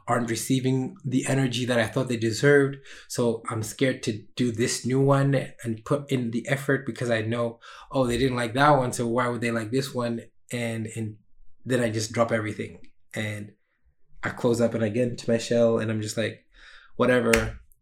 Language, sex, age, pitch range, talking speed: English, male, 20-39, 115-135 Hz, 200 wpm